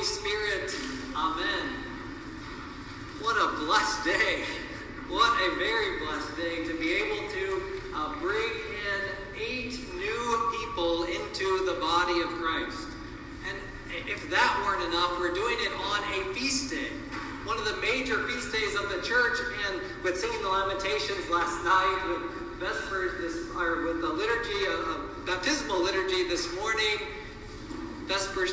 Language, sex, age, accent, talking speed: English, male, 50-69, American, 135 wpm